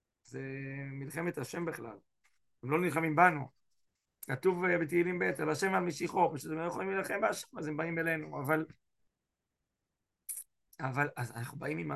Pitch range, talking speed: 140-170 Hz, 140 wpm